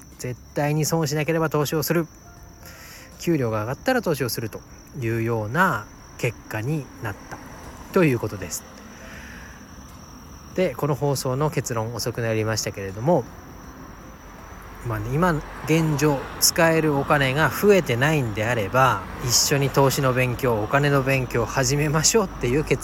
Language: Japanese